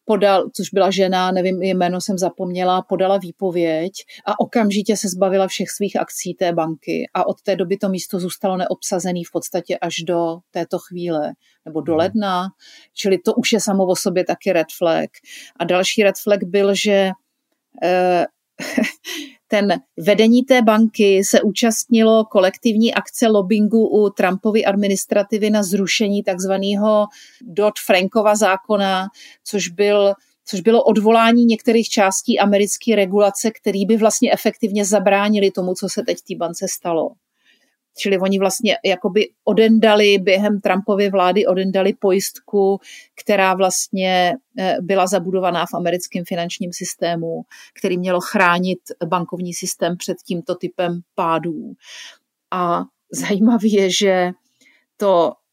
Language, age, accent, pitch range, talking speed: Czech, 40-59, native, 185-215 Hz, 135 wpm